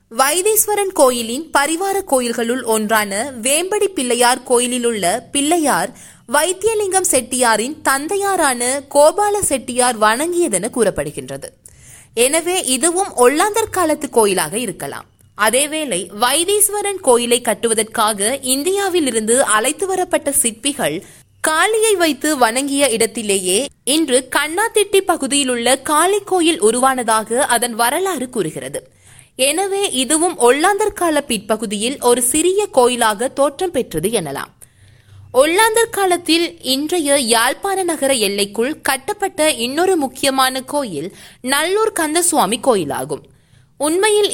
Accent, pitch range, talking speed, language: native, 240-355 Hz, 95 wpm, Tamil